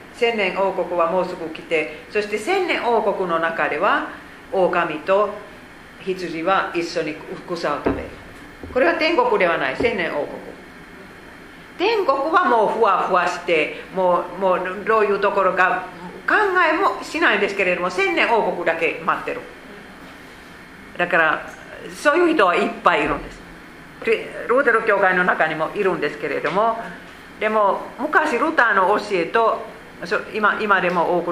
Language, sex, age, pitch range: Japanese, female, 50-69, 170-235 Hz